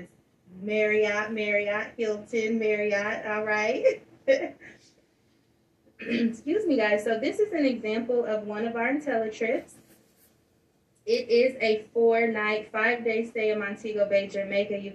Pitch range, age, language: 205-235 Hz, 20-39, English